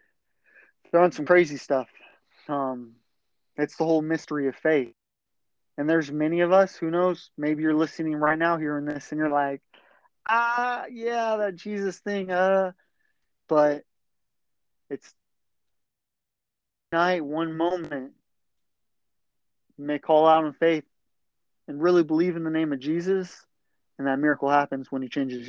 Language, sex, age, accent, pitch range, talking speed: English, male, 30-49, American, 140-170 Hz, 140 wpm